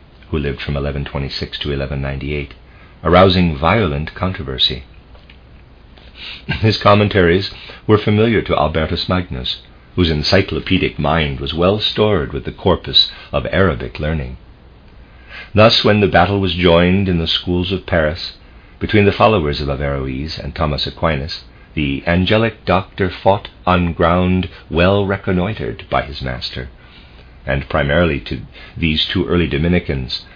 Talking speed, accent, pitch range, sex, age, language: 130 wpm, American, 70-90 Hz, male, 50-69, English